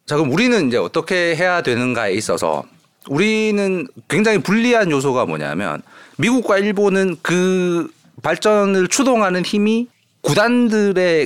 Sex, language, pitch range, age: male, Korean, 135-215 Hz, 40-59